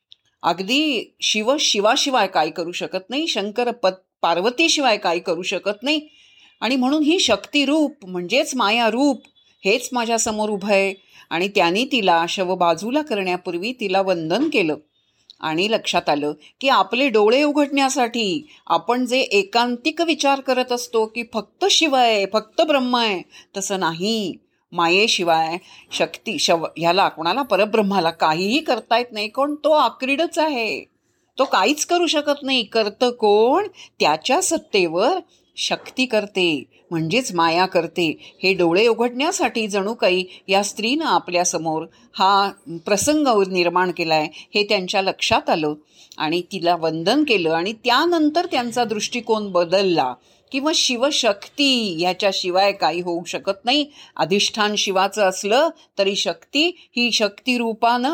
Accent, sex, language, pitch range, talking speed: native, female, Marathi, 180-260 Hz, 130 wpm